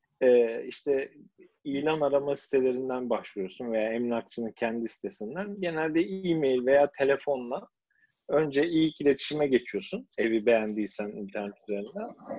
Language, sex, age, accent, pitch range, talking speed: Turkish, male, 50-69, native, 120-170 Hz, 105 wpm